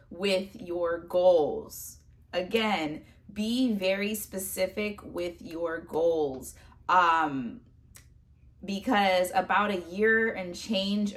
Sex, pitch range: female, 170-205 Hz